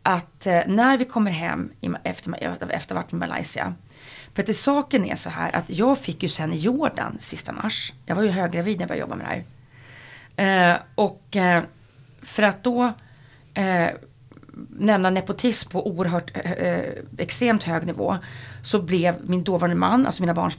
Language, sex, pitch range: English, female, 160-215 Hz